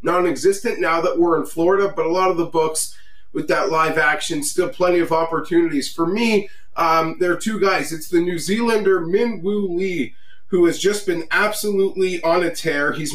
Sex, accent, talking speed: male, American, 190 wpm